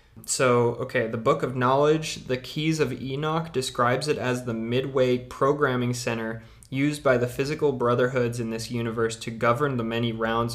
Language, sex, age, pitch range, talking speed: English, male, 20-39, 115-130 Hz, 170 wpm